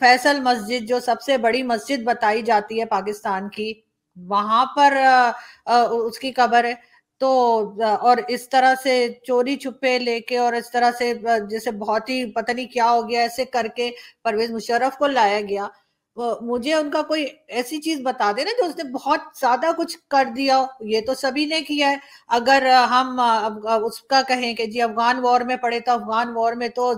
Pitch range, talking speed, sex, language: 225-260 Hz, 170 wpm, female, English